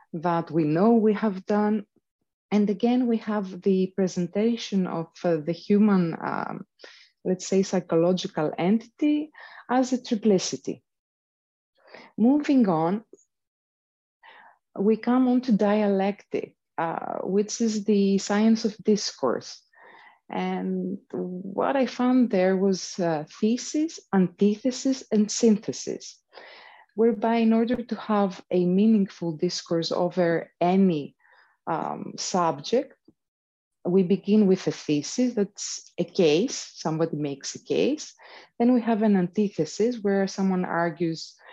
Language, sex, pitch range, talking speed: English, female, 180-230 Hz, 115 wpm